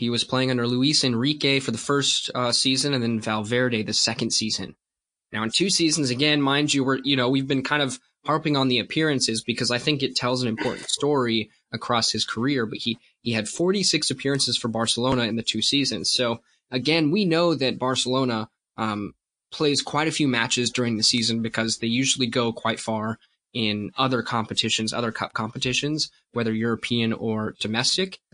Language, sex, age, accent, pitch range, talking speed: English, male, 20-39, American, 115-135 Hz, 185 wpm